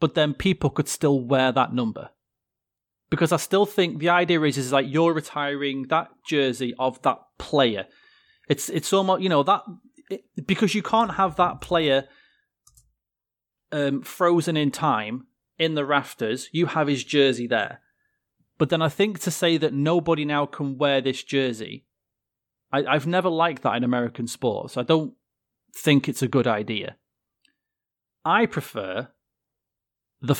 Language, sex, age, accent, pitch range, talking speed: English, male, 30-49, British, 125-160 Hz, 160 wpm